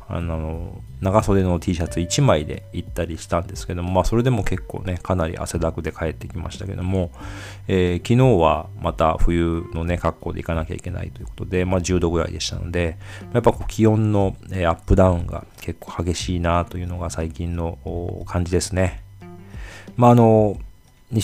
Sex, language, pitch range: male, Japanese, 80-100 Hz